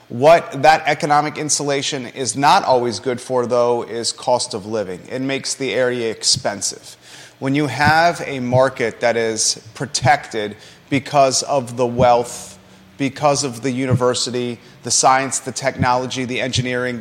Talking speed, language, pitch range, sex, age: 145 wpm, English, 120-150 Hz, male, 30-49